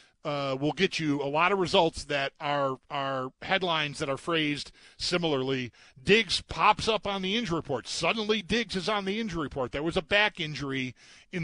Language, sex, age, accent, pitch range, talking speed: English, male, 40-59, American, 135-185 Hz, 190 wpm